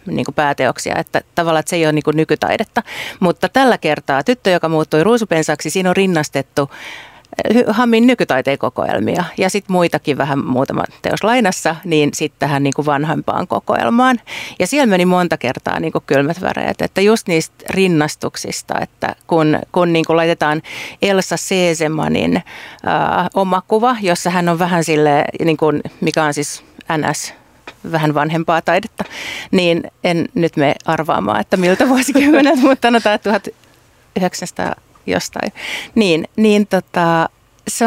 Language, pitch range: Finnish, 155-195 Hz